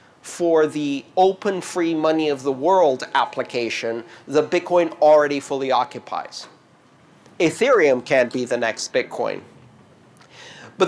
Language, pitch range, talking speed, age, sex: English, 155-220 Hz, 115 wpm, 50-69, male